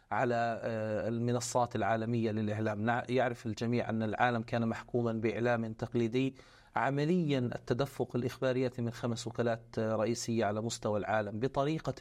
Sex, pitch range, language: male, 115-130 Hz, Arabic